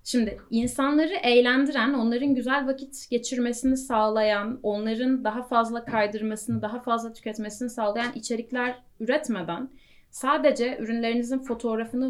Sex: female